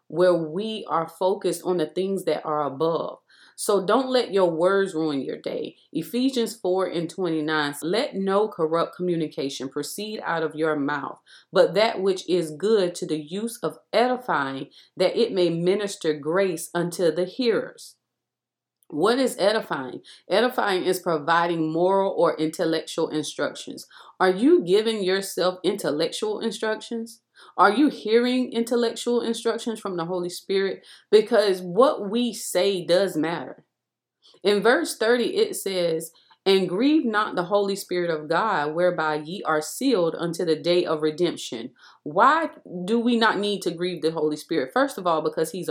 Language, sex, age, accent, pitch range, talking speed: English, female, 30-49, American, 165-220 Hz, 155 wpm